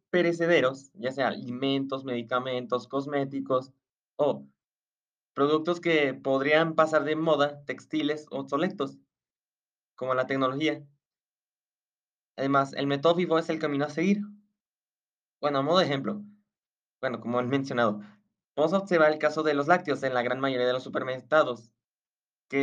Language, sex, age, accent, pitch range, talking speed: English, male, 20-39, Mexican, 135-155 Hz, 140 wpm